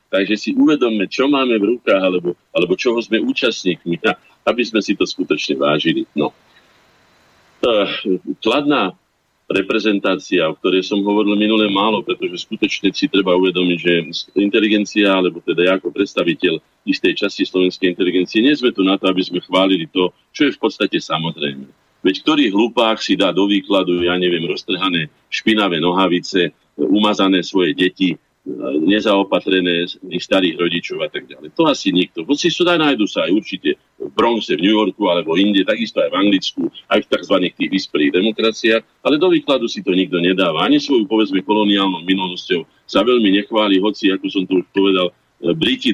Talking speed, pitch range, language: 165 wpm, 90-135 Hz, Slovak